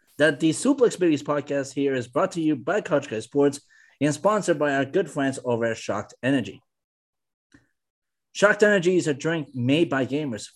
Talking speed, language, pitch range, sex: 180 wpm, English, 130-170 Hz, male